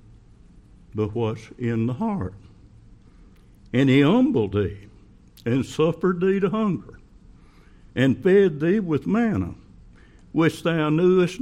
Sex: male